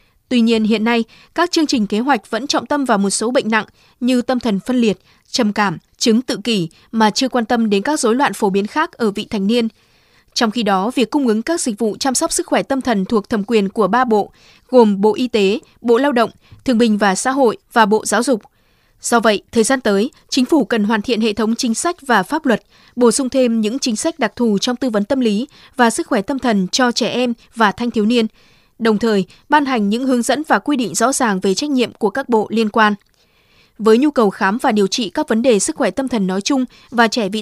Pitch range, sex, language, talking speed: 215-260 Hz, female, Vietnamese, 255 wpm